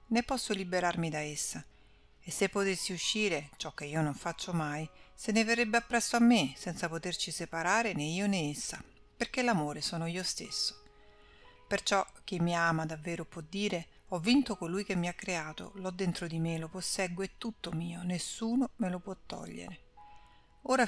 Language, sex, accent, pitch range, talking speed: Italian, female, native, 165-200 Hz, 180 wpm